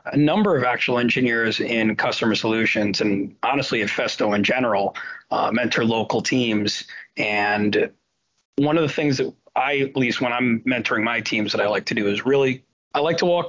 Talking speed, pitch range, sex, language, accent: 190 wpm, 110-130 Hz, male, English, American